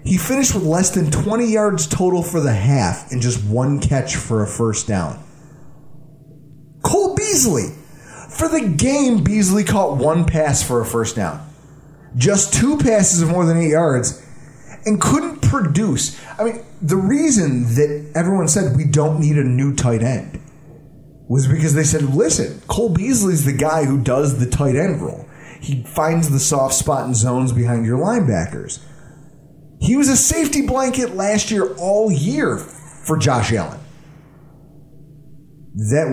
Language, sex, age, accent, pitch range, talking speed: English, male, 30-49, American, 140-185 Hz, 160 wpm